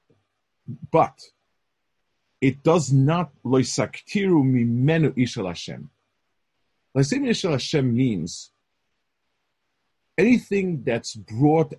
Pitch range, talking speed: 115-155 Hz, 65 wpm